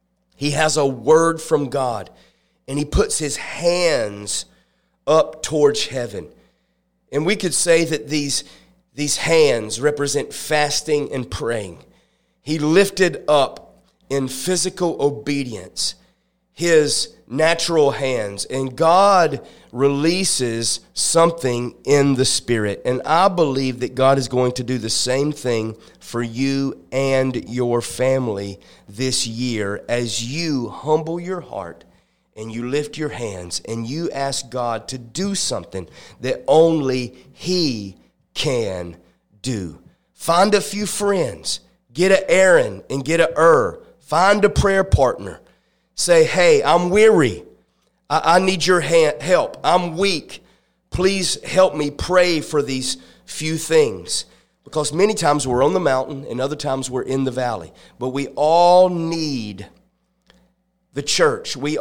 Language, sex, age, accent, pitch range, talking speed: English, male, 30-49, American, 120-165 Hz, 135 wpm